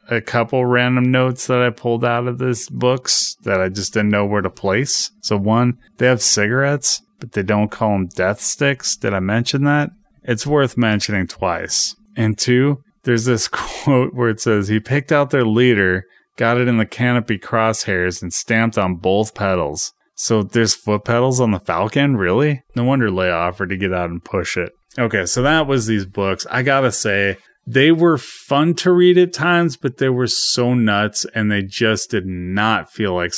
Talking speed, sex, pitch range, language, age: 195 wpm, male, 100-125 Hz, English, 30-49